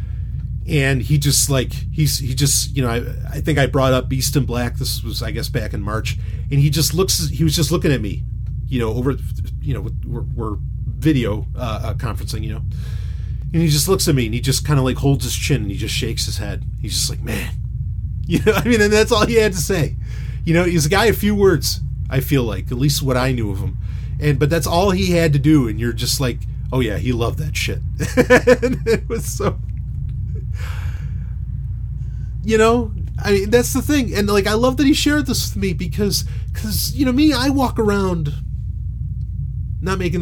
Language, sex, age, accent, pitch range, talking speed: English, male, 30-49, American, 110-150 Hz, 220 wpm